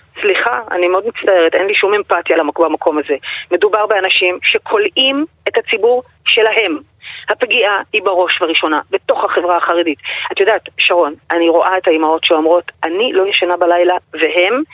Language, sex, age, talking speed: Hebrew, female, 30-49, 145 wpm